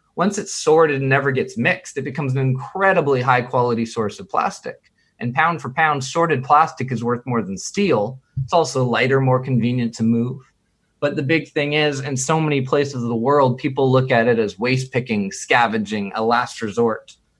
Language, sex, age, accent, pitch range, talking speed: German, male, 20-39, American, 115-140 Hz, 190 wpm